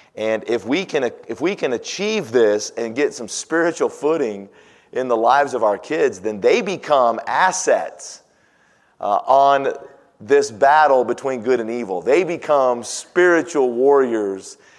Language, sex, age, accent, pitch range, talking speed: English, male, 40-59, American, 120-160 Hz, 145 wpm